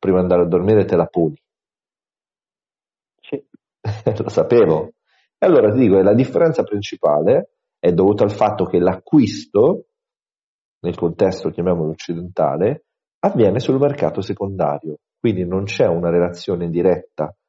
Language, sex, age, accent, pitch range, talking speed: Italian, male, 40-59, native, 90-135 Hz, 125 wpm